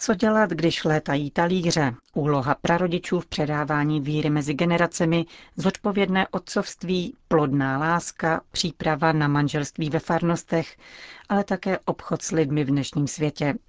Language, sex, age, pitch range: Czech, female, 40-59, 150-185 Hz